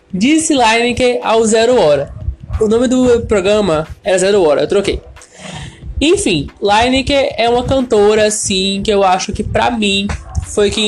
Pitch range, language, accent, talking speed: 195-240 Hz, Portuguese, Brazilian, 155 wpm